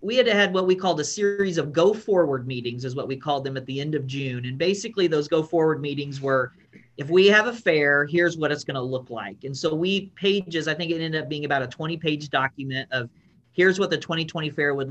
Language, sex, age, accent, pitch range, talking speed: English, male, 40-59, American, 130-165 Hz, 255 wpm